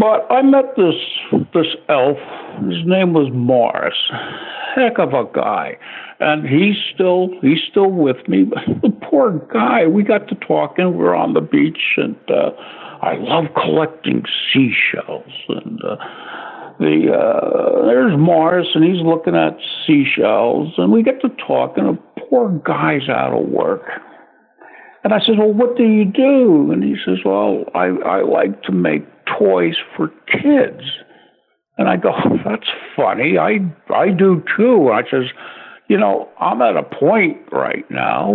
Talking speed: 160 wpm